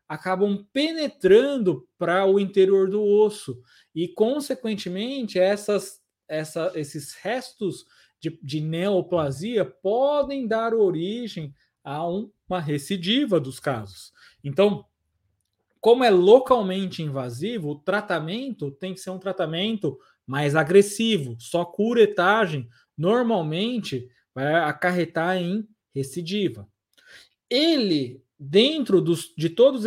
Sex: male